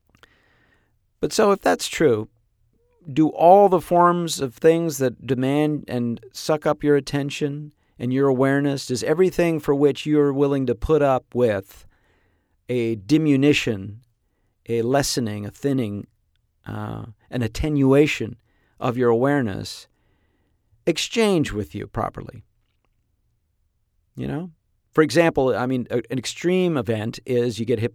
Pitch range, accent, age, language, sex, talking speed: 110-140 Hz, American, 40-59, English, male, 130 wpm